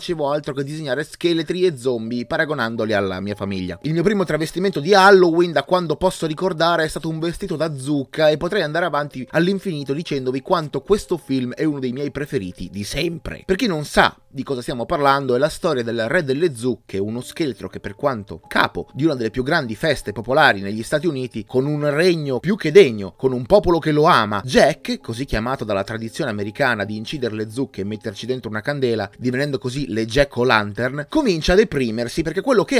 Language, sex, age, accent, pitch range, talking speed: Italian, male, 30-49, native, 120-185 Hz, 205 wpm